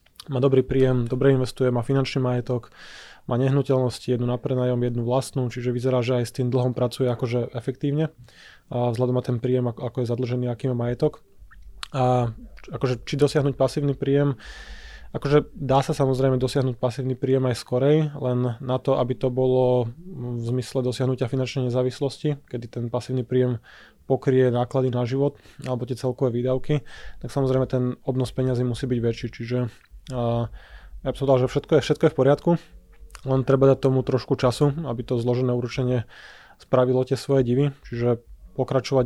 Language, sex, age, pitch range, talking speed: Slovak, male, 20-39, 120-135 Hz, 165 wpm